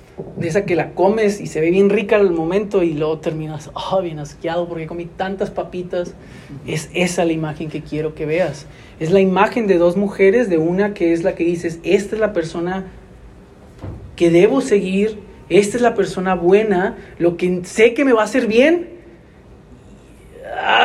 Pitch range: 175-240 Hz